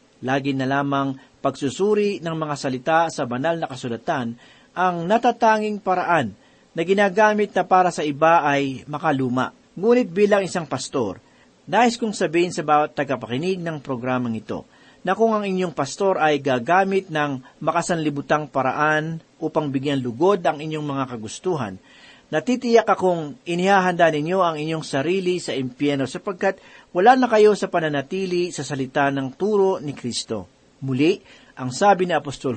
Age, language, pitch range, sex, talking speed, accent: 40-59, Filipino, 140-185 Hz, male, 145 wpm, native